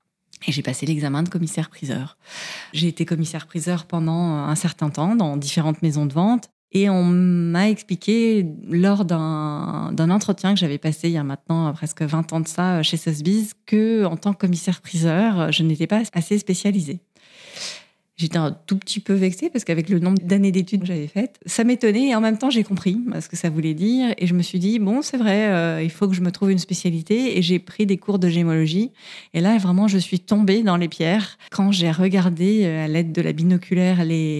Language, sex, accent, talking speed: French, female, French, 215 wpm